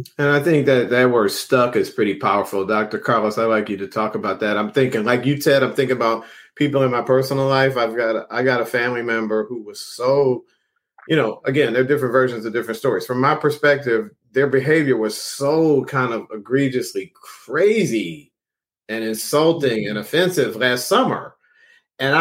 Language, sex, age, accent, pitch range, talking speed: English, male, 40-59, American, 120-150 Hz, 185 wpm